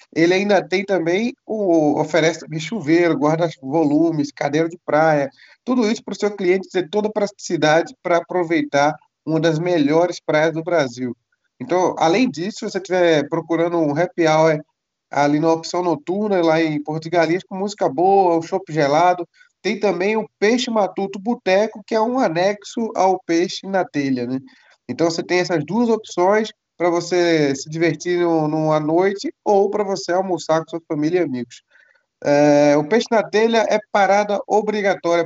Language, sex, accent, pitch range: Portuguese, male, Brazilian, 165-200 Hz